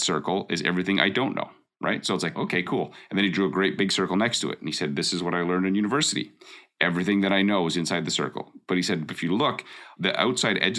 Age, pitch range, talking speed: 40-59, 80-95 Hz, 280 wpm